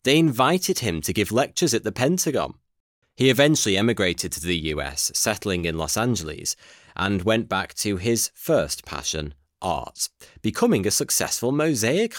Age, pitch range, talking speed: 30-49, 90-130 Hz, 155 wpm